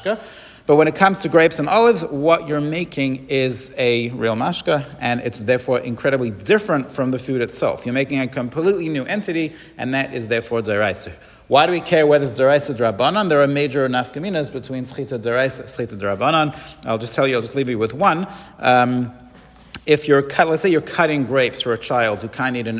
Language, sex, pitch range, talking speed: English, male, 125-155 Hz, 205 wpm